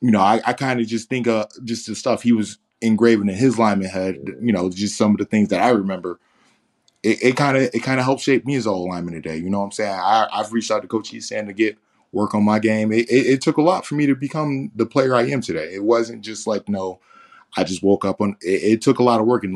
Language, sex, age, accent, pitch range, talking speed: English, male, 20-39, American, 95-115 Hz, 290 wpm